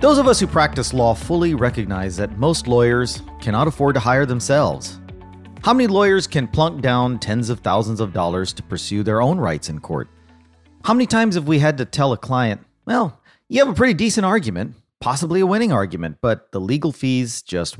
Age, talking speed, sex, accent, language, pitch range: 40-59, 200 wpm, male, American, English, 95-145 Hz